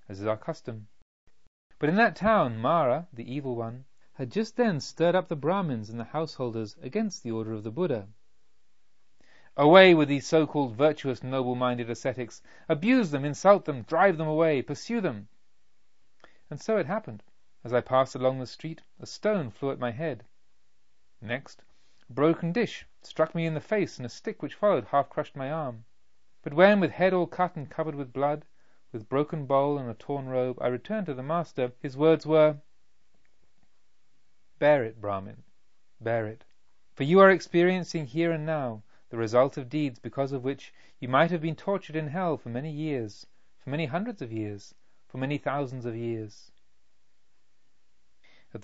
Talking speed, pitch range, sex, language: 175 wpm, 120-165 Hz, male, English